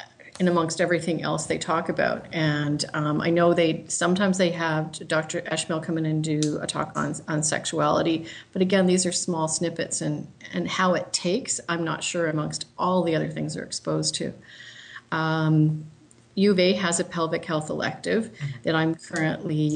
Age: 40-59